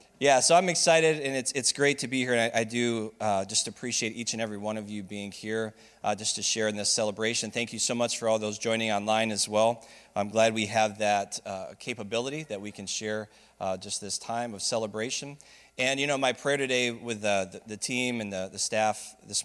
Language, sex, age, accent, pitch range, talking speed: English, male, 20-39, American, 105-125 Hz, 240 wpm